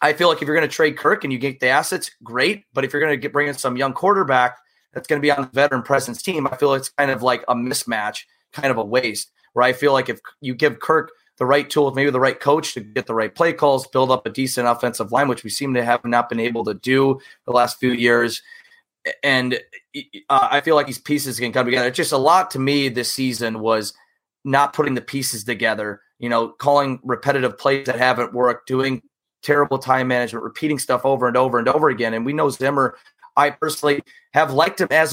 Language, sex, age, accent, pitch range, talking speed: English, male, 30-49, American, 125-145 Hz, 245 wpm